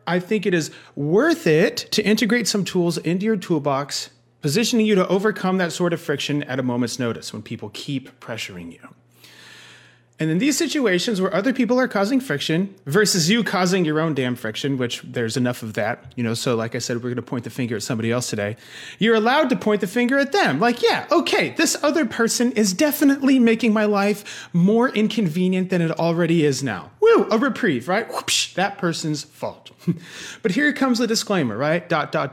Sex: male